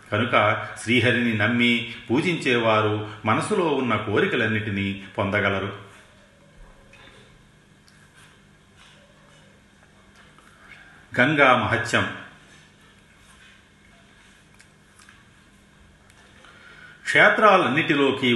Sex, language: male, Telugu